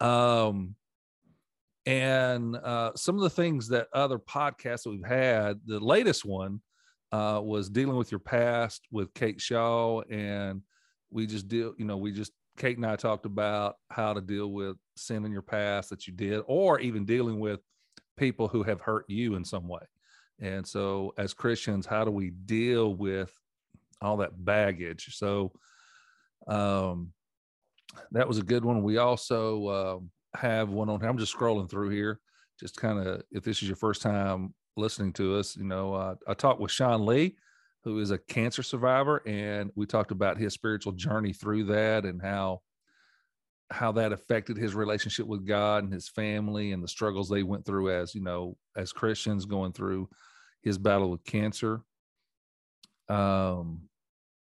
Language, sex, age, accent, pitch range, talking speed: English, male, 40-59, American, 100-115 Hz, 170 wpm